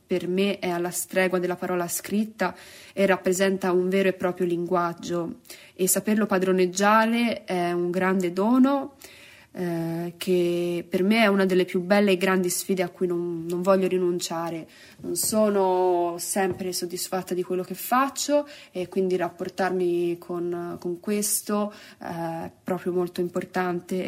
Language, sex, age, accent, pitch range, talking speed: Italian, female, 20-39, native, 175-195 Hz, 145 wpm